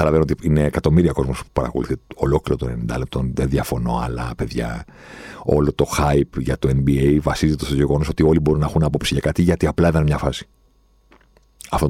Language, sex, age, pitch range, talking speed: Greek, male, 50-69, 70-95 Hz, 190 wpm